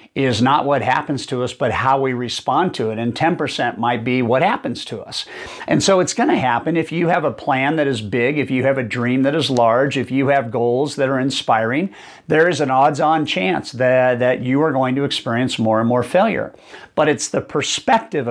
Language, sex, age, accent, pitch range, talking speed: English, male, 50-69, American, 130-155 Hz, 225 wpm